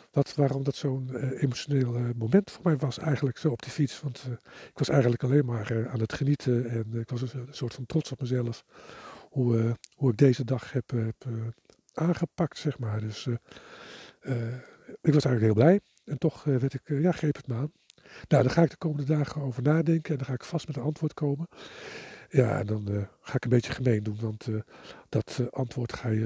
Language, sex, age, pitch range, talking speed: Dutch, male, 50-69, 120-145 Hz, 225 wpm